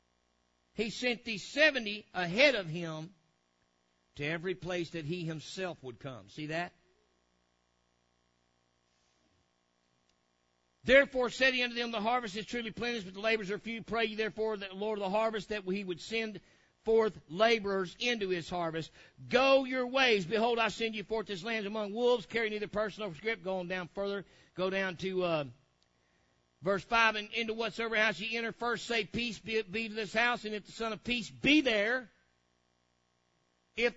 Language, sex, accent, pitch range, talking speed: English, male, American, 145-235 Hz, 175 wpm